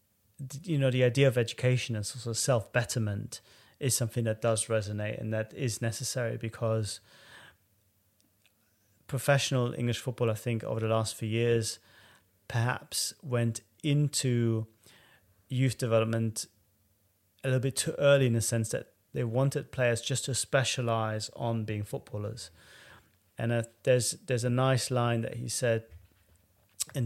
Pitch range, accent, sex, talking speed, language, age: 105-120 Hz, British, male, 145 wpm, English, 30-49